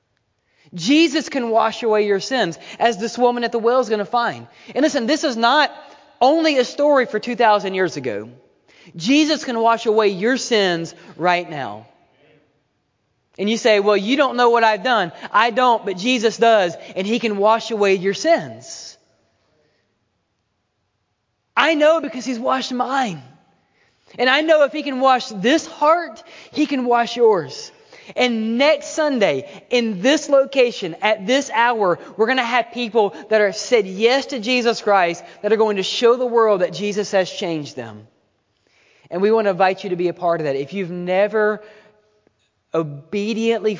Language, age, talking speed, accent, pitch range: English, 30-49, 175 wpm, American, 180-250 Hz